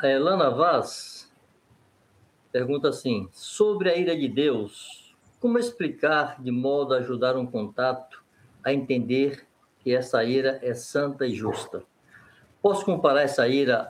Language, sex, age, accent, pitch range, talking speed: Portuguese, male, 60-79, Brazilian, 130-175 Hz, 135 wpm